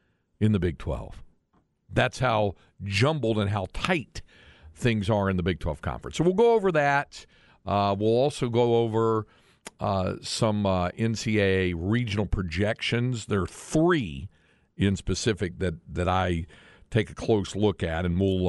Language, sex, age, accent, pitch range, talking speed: English, male, 50-69, American, 90-110 Hz, 155 wpm